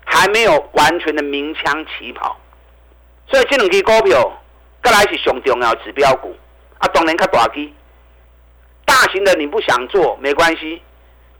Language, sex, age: Chinese, male, 50-69